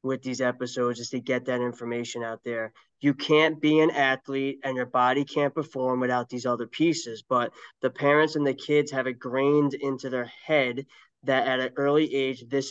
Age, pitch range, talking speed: 20-39, 130-145 Hz, 200 wpm